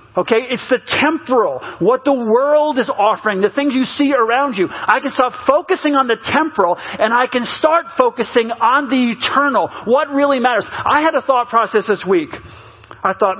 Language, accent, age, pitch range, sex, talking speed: English, American, 40-59, 190-260 Hz, male, 190 wpm